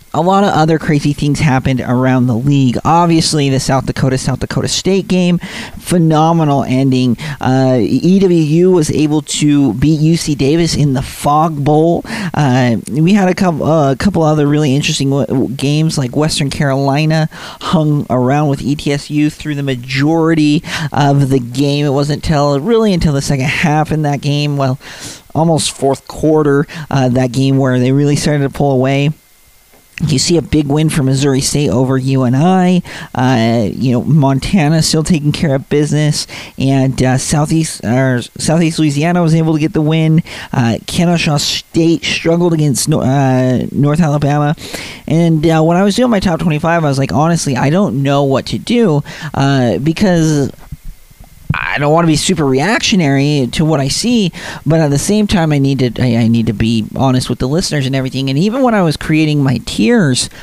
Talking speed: 175 wpm